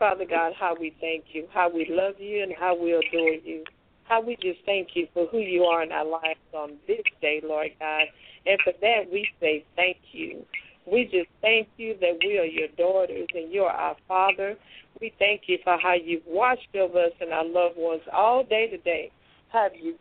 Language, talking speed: English, 215 wpm